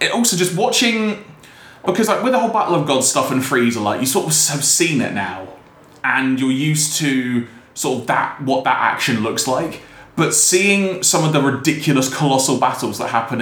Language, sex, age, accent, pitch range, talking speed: English, male, 20-39, British, 120-170 Hz, 200 wpm